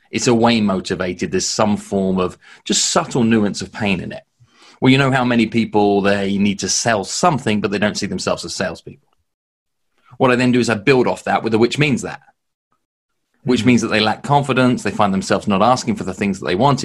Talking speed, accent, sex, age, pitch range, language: 230 wpm, British, male, 30-49, 95-120 Hz, English